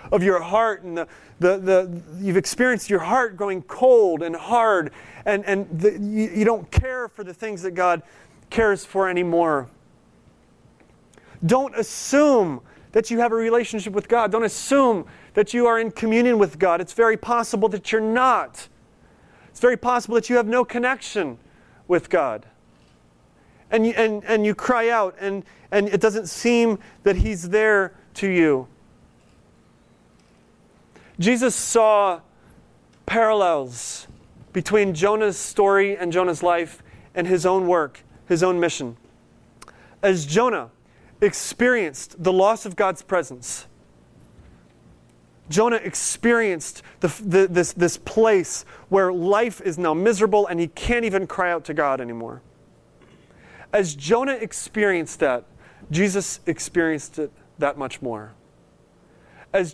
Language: English